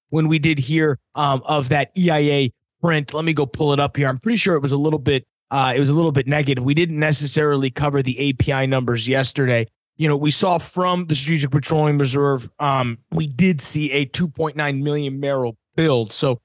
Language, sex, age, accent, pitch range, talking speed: English, male, 30-49, American, 130-150 Hz, 210 wpm